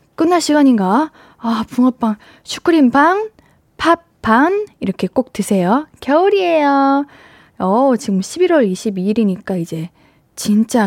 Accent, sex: native, female